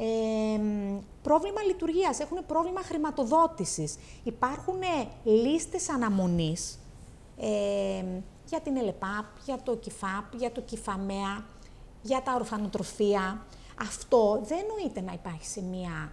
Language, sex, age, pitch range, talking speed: Greek, female, 30-49, 195-315 Hz, 110 wpm